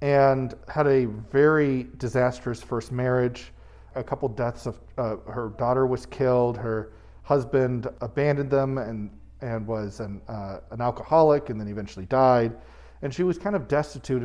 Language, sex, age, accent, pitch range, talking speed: English, male, 40-59, American, 110-145 Hz, 155 wpm